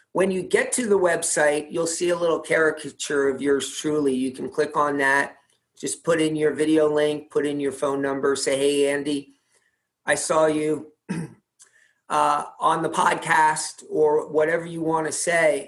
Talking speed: 170 wpm